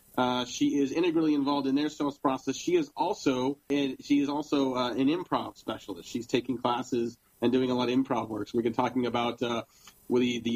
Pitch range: 120-145 Hz